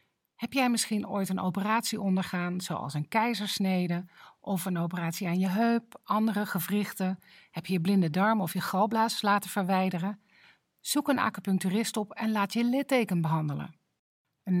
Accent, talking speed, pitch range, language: Dutch, 155 wpm, 180-220 Hz, Dutch